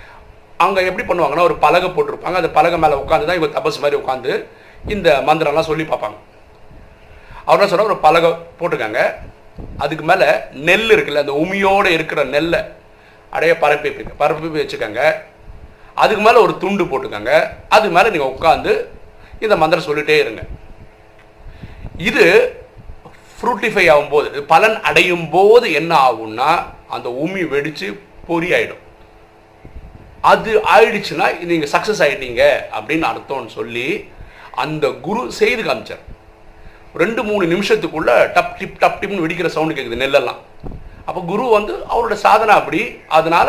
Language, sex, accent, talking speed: Tamil, male, native, 105 wpm